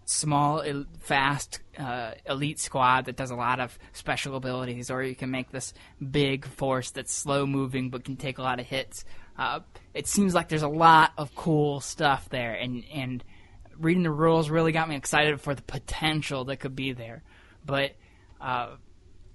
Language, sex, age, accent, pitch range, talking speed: English, male, 20-39, American, 125-155 Hz, 175 wpm